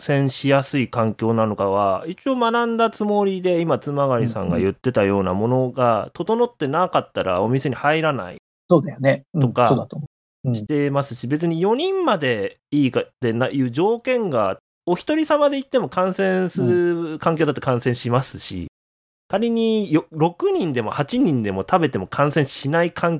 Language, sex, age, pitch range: Japanese, male, 30-49, 125-185 Hz